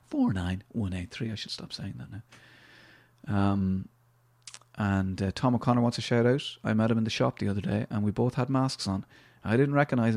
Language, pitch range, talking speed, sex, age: English, 110-125 Hz, 225 wpm, male, 30-49